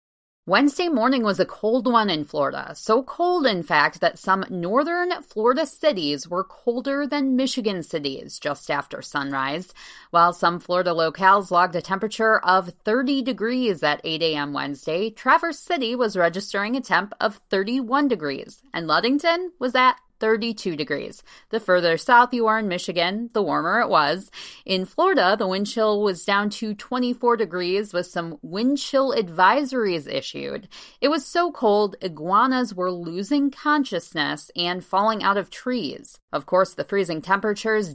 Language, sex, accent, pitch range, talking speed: English, female, American, 175-245 Hz, 155 wpm